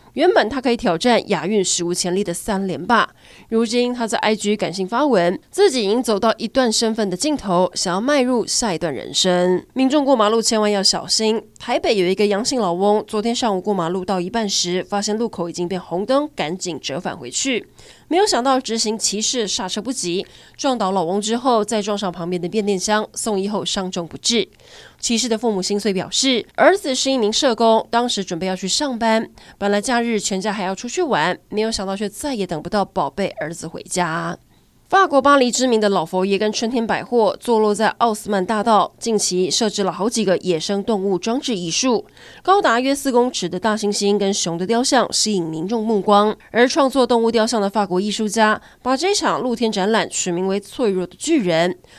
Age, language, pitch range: 20-39, Chinese, 185-235 Hz